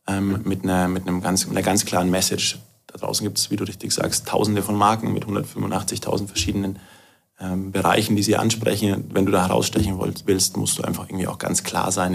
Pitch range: 95-110 Hz